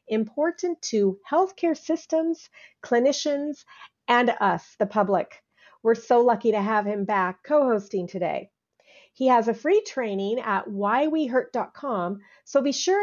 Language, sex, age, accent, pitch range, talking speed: English, female, 40-59, American, 205-280 Hz, 135 wpm